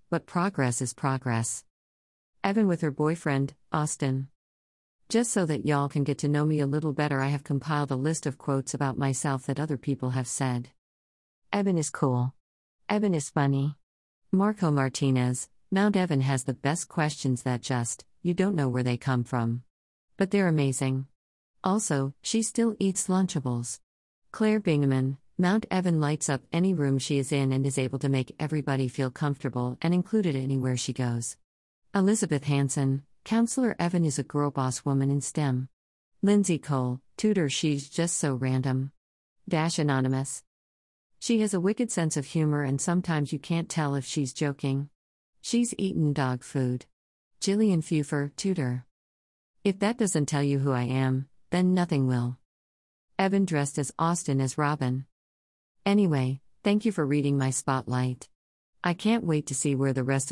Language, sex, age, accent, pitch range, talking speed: English, female, 50-69, American, 130-170 Hz, 165 wpm